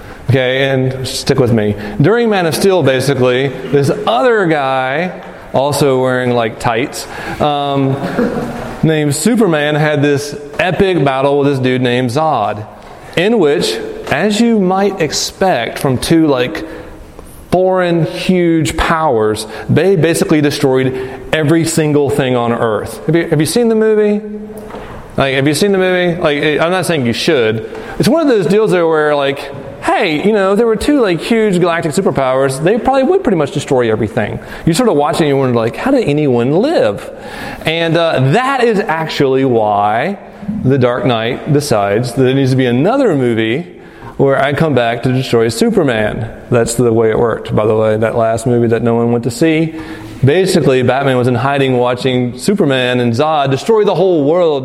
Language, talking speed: English, 175 wpm